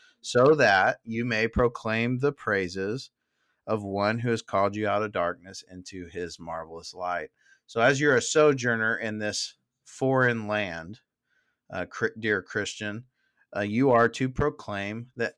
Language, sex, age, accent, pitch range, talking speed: English, male, 30-49, American, 100-125 Hz, 150 wpm